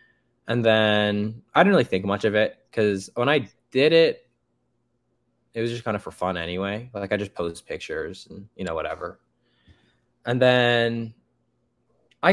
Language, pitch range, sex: English, 95-115 Hz, male